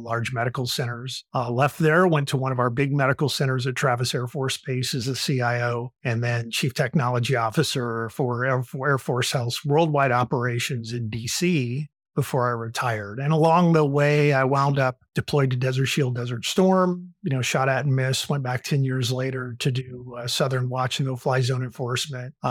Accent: American